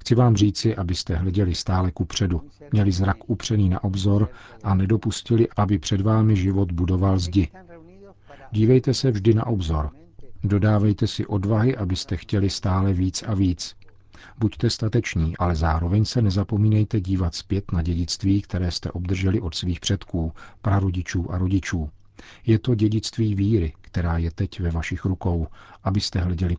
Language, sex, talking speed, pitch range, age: Czech, male, 150 wpm, 90-105 Hz, 50-69